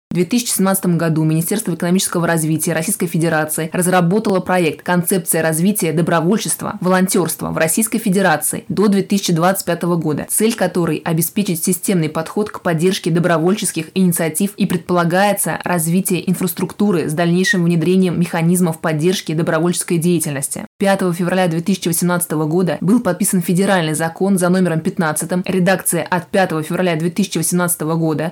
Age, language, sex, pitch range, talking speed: 20-39, Russian, female, 165-190 Hz, 125 wpm